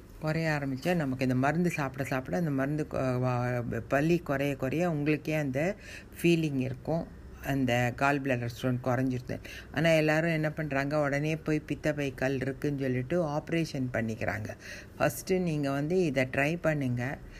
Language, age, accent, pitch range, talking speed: Tamil, 60-79, native, 125-150 Hz, 135 wpm